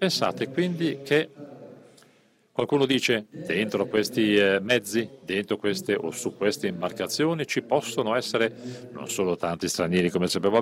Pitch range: 105-150 Hz